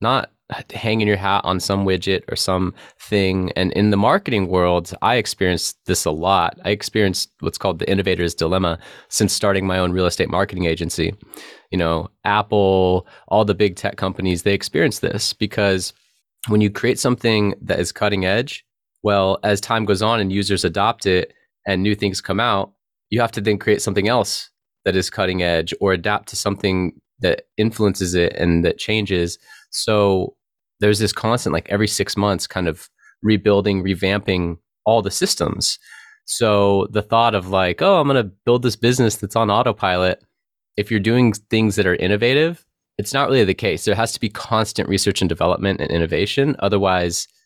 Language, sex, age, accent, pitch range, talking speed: English, male, 20-39, American, 95-105 Hz, 180 wpm